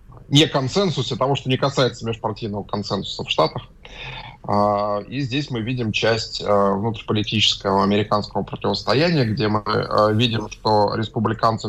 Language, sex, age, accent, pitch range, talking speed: Russian, male, 20-39, native, 105-130 Hz, 120 wpm